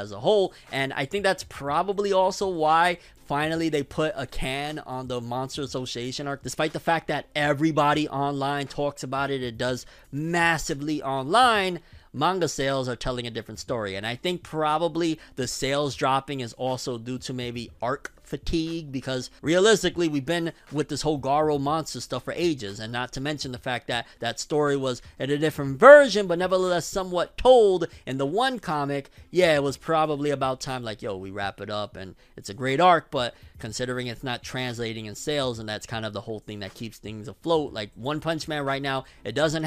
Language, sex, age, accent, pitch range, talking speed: English, male, 30-49, American, 115-155 Hz, 200 wpm